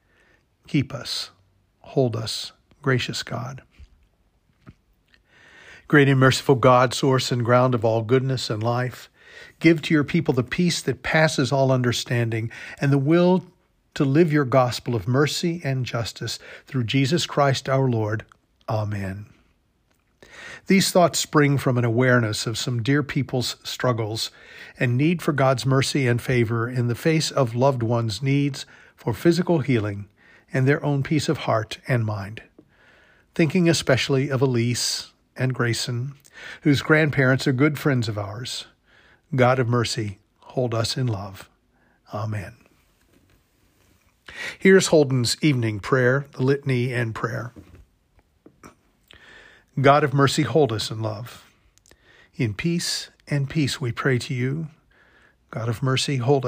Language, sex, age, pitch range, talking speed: English, male, 50-69, 115-145 Hz, 135 wpm